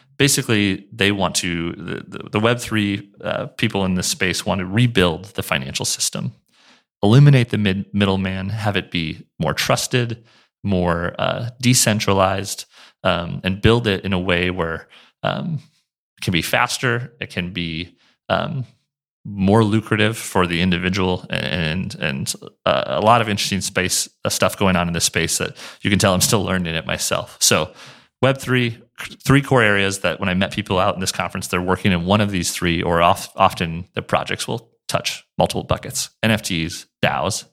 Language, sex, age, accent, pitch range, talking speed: English, male, 30-49, American, 90-115 Hz, 175 wpm